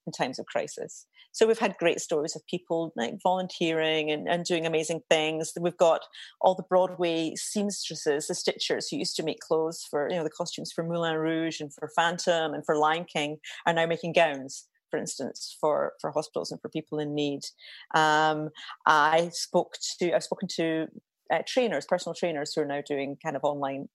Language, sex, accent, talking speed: English, female, British, 195 wpm